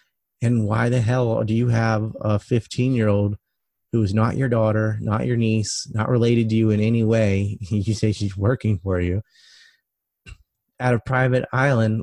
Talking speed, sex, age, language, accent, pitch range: 170 wpm, male, 30-49, English, American, 100-120 Hz